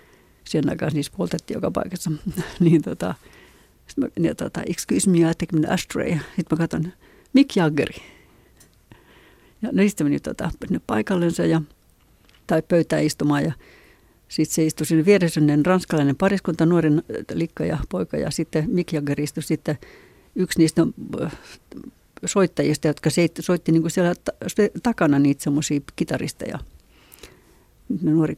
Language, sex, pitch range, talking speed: Finnish, female, 160-235 Hz, 125 wpm